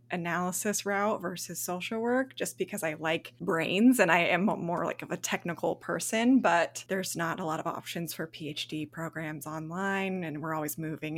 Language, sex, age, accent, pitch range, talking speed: English, female, 20-39, American, 165-200 Hz, 185 wpm